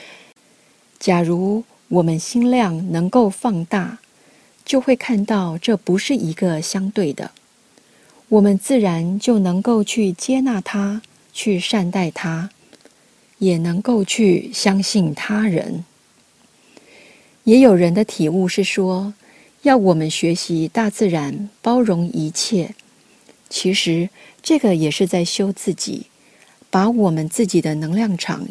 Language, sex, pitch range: Chinese, female, 175-225 Hz